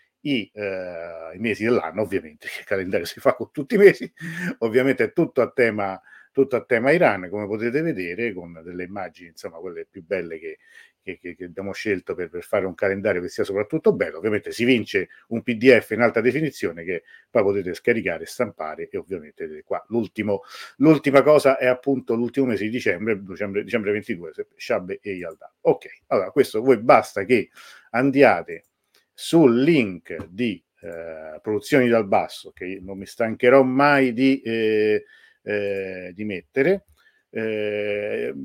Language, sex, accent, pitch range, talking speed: Italian, male, native, 105-160 Hz, 165 wpm